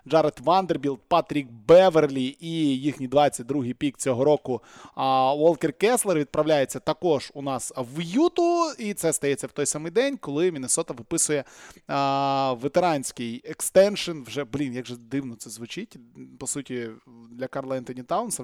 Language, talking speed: Russian, 145 wpm